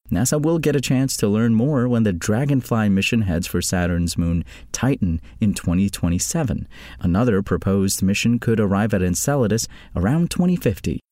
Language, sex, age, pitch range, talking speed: English, male, 30-49, 90-140 Hz, 150 wpm